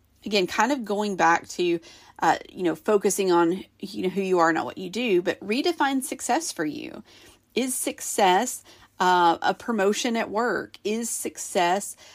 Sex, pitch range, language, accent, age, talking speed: female, 170-240 Hz, English, American, 40-59, 170 wpm